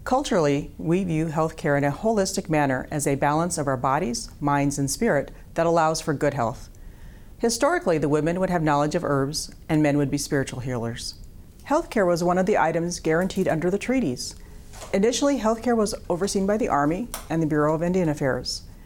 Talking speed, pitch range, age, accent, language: 195 wpm, 145-195 Hz, 40-59, American, English